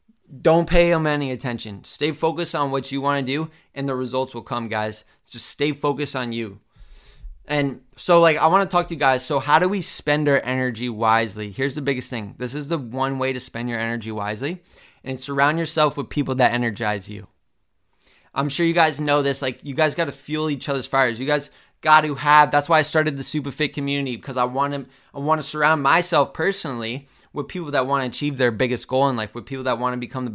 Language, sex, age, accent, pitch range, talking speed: English, male, 20-39, American, 125-150 Hz, 235 wpm